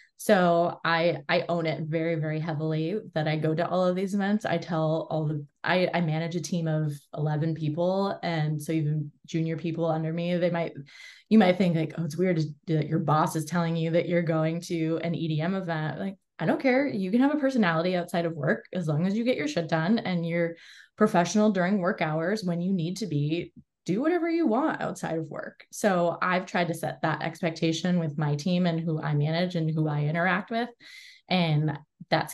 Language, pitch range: English, 160-185 Hz